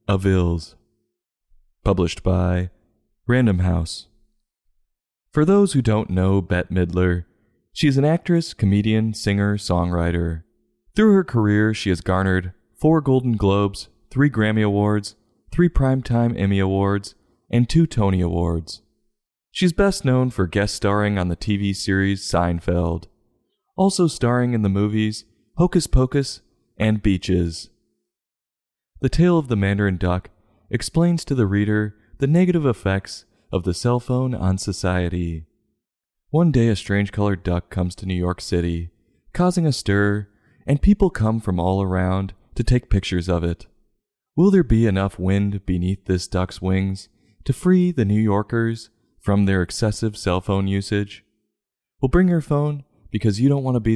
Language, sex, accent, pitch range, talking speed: English, male, American, 90-120 Hz, 150 wpm